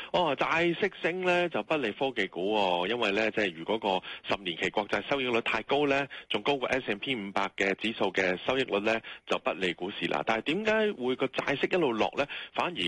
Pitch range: 90-125 Hz